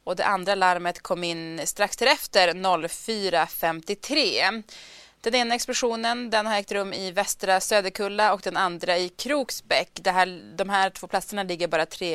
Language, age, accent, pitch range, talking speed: Swedish, 20-39, native, 180-225 Hz, 165 wpm